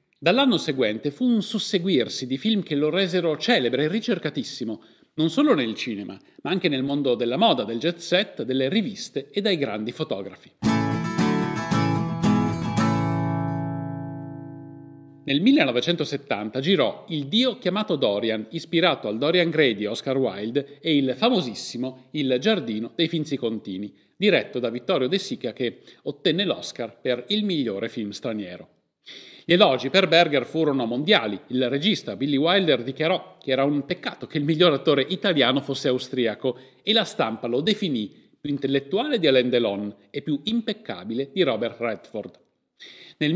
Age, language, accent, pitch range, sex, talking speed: 40-59, Italian, native, 125-185 Hz, male, 145 wpm